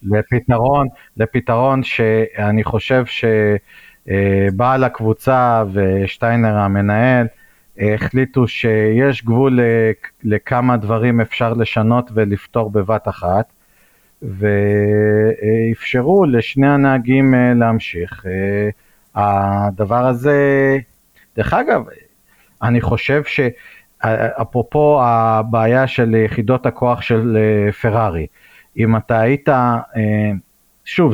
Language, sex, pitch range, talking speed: Hebrew, male, 105-125 Hz, 75 wpm